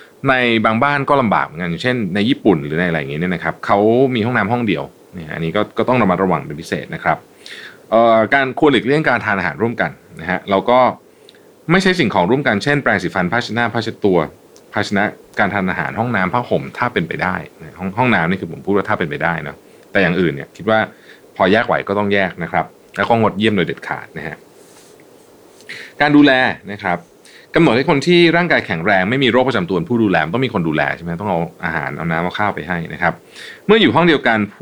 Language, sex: Thai, male